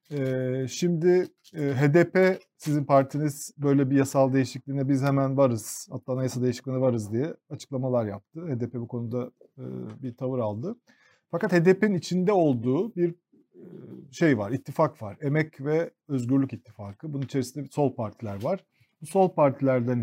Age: 40-59